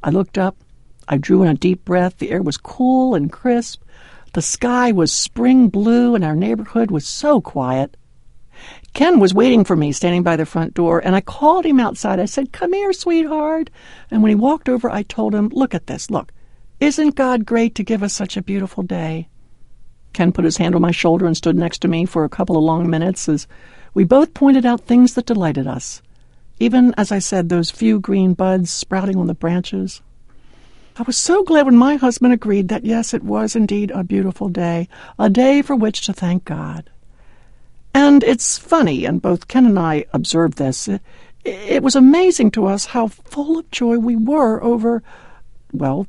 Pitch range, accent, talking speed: 170-245 Hz, American, 200 wpm